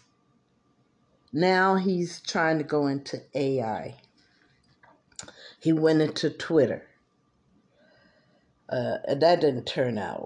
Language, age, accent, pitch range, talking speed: English, 50-69, American, 150-190 Hz, 100 wpm